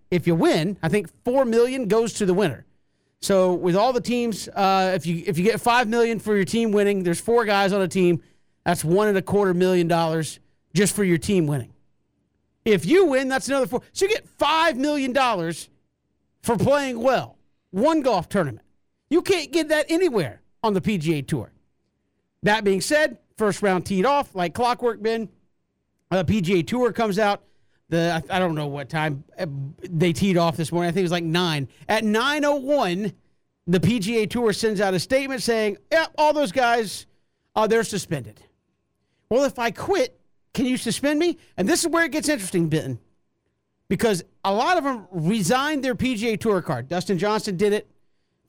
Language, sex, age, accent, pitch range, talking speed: English, male, 40-59, American, 175-245 Hz, 190 wpm